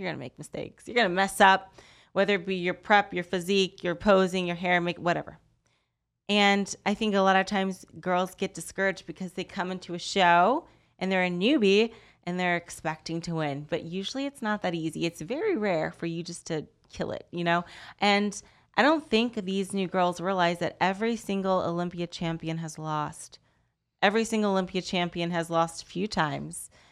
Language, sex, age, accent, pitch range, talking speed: English, female, 30-49, American, 170-205 Hz, 200 wpm